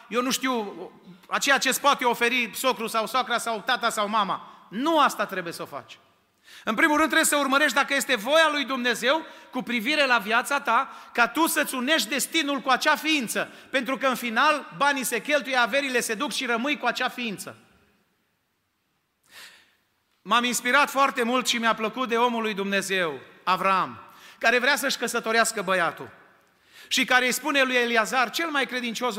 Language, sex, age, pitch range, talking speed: Romanian, male, 40-59, 220-270 Hz, 175 wpm